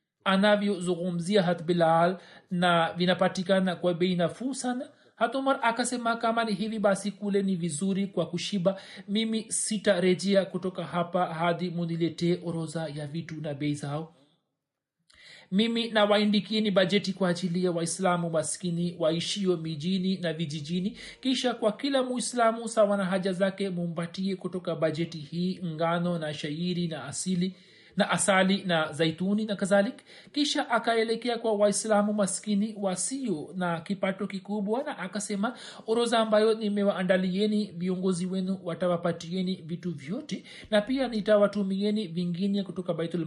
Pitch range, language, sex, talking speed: 175-215 Hz, Swahili, male, 125 wpm